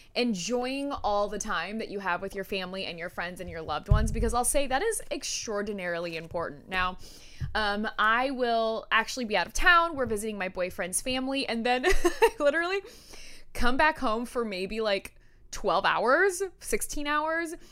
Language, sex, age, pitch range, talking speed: English, female, 20-39, 195-255 Hz, 175 wpm